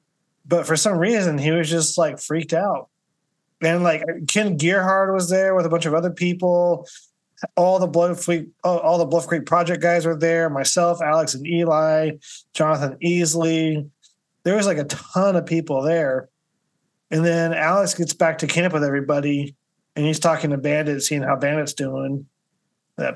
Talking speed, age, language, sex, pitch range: 170 wpm, 20-39, English, male, 150-175 Hz